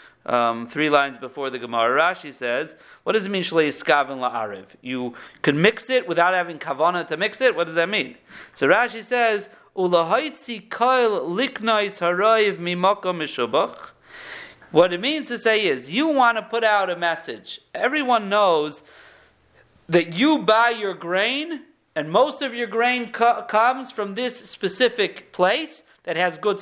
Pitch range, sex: 195-265 Hz, male